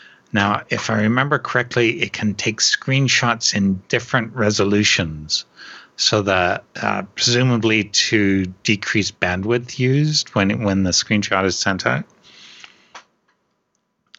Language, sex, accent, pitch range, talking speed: English, male, American, 95-120 Hz, 115 wpm